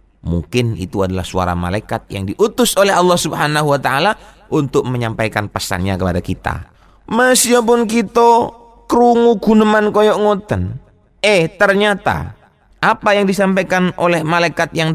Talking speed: 130 wpm